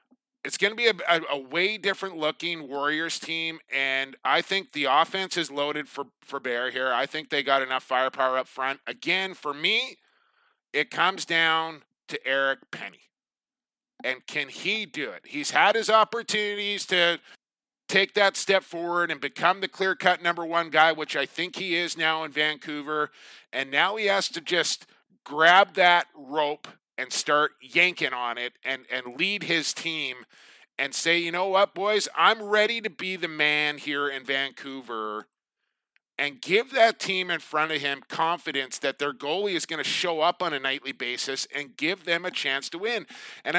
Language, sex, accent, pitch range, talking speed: English, male, American, 145-190 Hz, 180 wpm